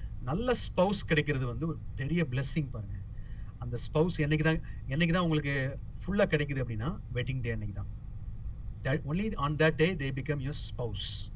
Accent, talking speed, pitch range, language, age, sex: Indian, 105 wpm, 110-155 Hz, English, 30-49, male